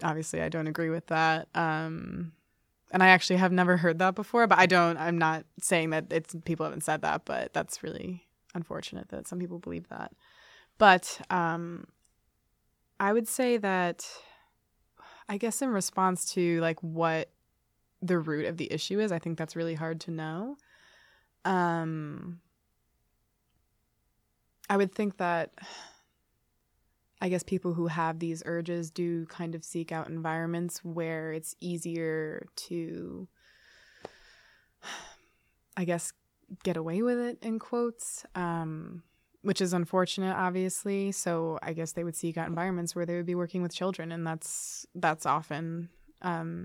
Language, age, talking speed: English, 20-39, 155 wpm